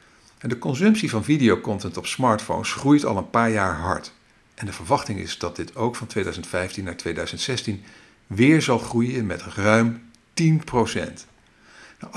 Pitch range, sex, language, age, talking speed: 105-145 Hz, male, Dutch, 50-69, 145 wpm